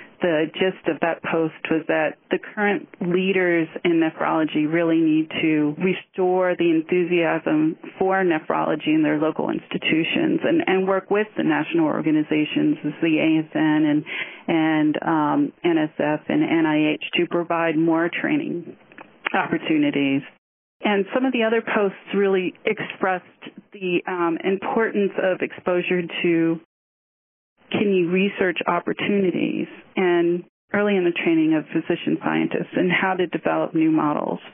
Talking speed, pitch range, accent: 130 wpm, 165-205 Hz, American